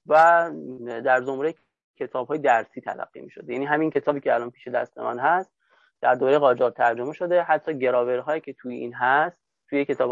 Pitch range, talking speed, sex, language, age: 125-170 Hz, 190 wpm, male, Persian, 30-49